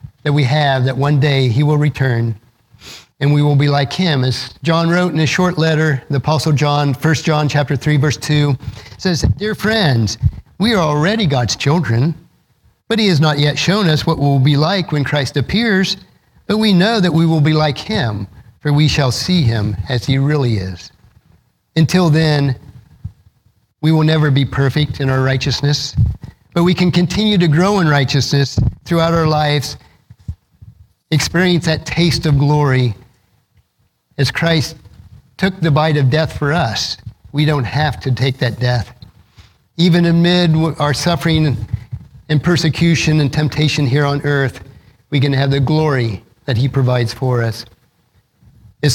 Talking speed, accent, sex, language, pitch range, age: 165 wpm, American, male, English, 125-155 Hz, 50-69